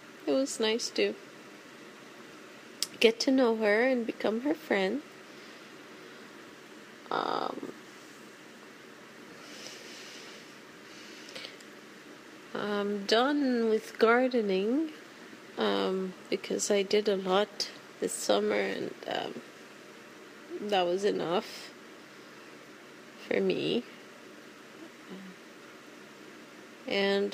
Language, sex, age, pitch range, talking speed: English, female, 30-49, 190-230 Hz, 70 wpm